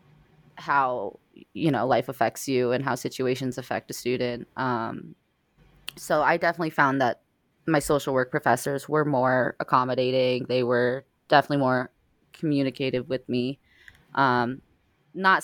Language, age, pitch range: English, 20-39, 125-145 Hz